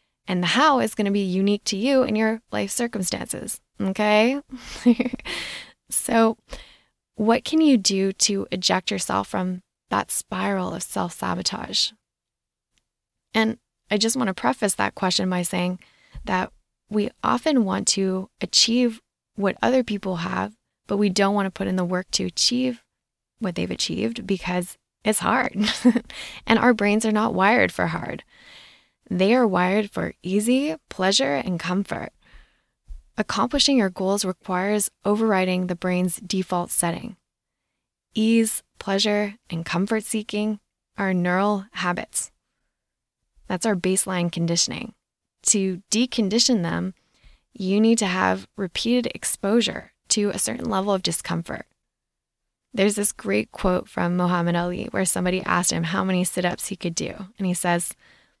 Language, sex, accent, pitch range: English, female, American, 180-220 Hz